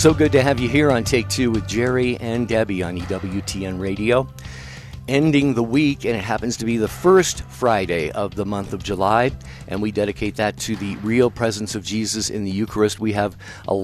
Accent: American